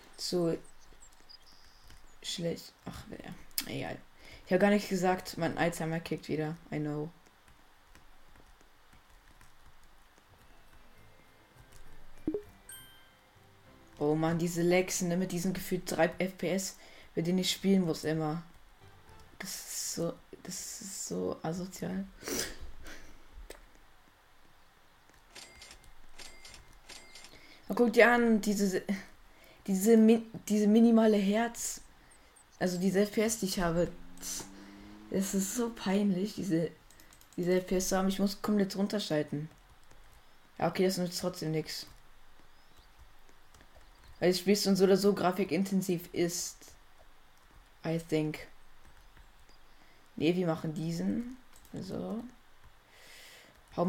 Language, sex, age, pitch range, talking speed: German, female, 20-39, 155-195 Hz, 100 wpm